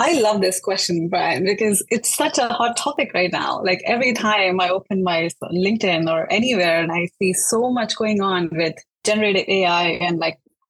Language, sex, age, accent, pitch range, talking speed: English, female, 20-39, Indian, 175-215 Hz, 195 wpm